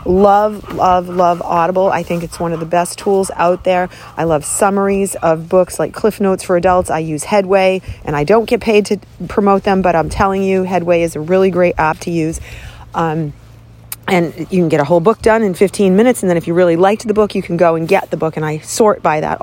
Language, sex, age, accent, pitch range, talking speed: English, female, 40-59, American, 165-205 Hz, 245 wpm